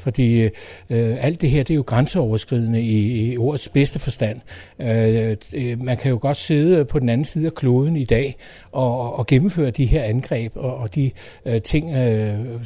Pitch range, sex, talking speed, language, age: 125-160 Hz, male, 195 wpm, Danish, 60-79